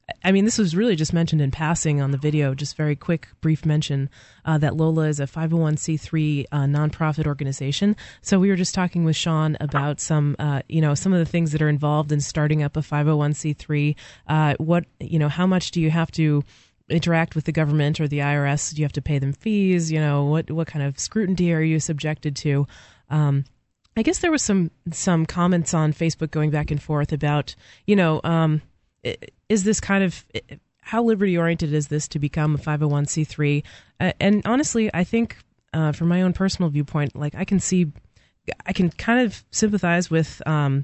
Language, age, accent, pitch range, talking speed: English, 30-49, American, 150-170 Hz, 200 wpm